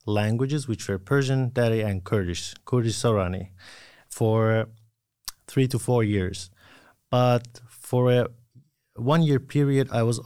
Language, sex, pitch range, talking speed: Finnish, male, 105-130 Hz, 125 wpm